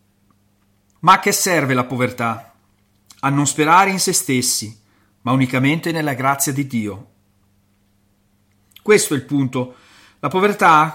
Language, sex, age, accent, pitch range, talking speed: Italian, male, 40-59, native, 110-150 Hz, 130 wpm